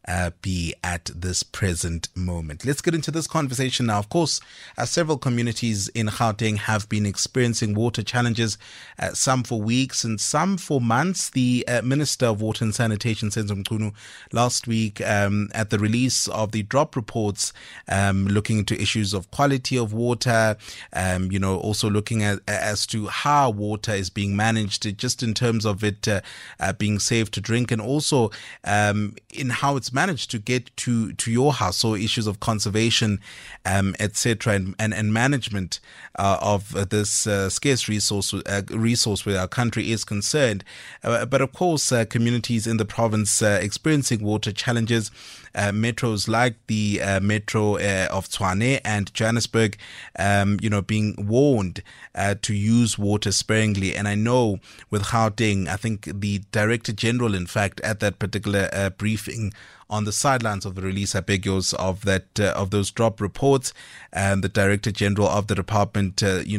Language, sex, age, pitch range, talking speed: English, male, 30-49, 100-120 Hz, 175 wpm